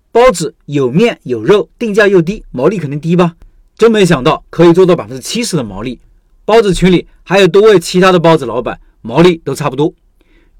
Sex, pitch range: male, 160-205 Hz